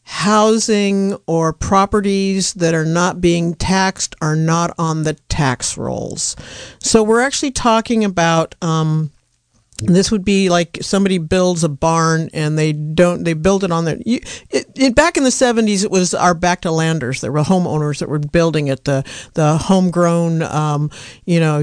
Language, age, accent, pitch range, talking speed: English, 50-69, American, 160-205 Hz, 165 wpm